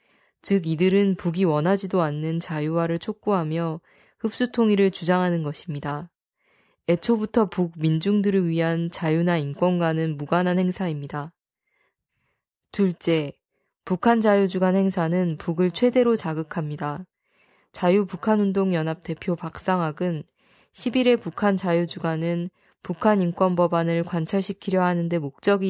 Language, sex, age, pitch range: Korean, female, 20-39, 165-195 Hz